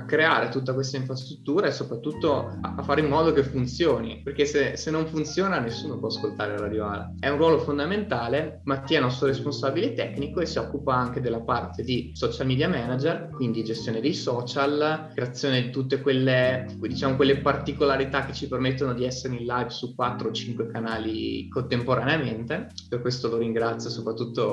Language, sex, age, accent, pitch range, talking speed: Italian, male, 20-39, native, 115-140 Hz, 175 wpm